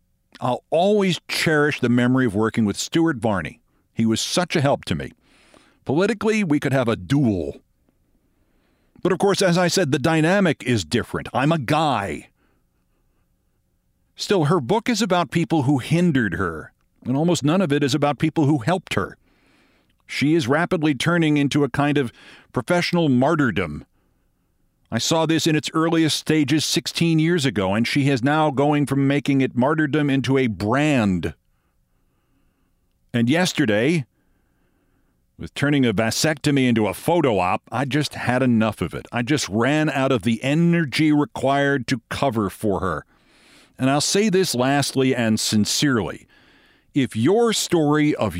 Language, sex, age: English, male, 50-69